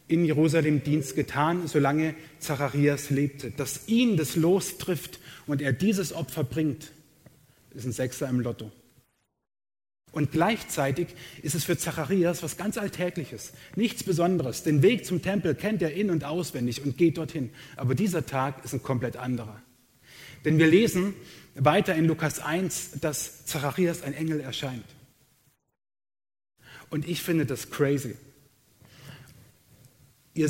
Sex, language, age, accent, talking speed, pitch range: male, German, 30-49, German, 140 wpm, 135-165 Hz